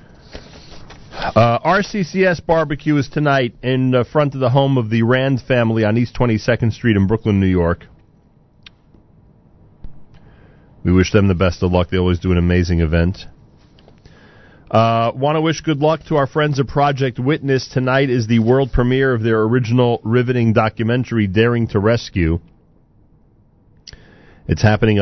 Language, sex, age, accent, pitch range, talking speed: English, male, 40-59, American, 95-125 Hz, 150 wpm